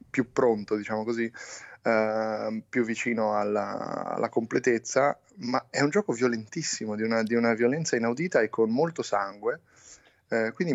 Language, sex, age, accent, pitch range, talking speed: Italian, male, 20-39, native, 110-140 Hz, 150 wpm